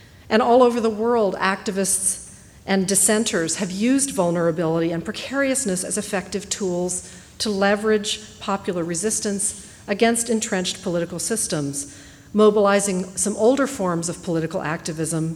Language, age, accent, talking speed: English, 50-69, American, 120 wpm